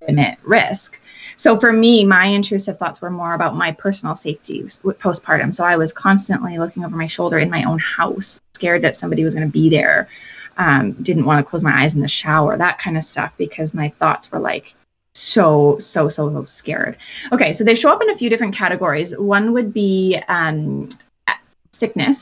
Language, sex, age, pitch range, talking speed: English, female, 20-39, 160-195 Hz, 195 wpm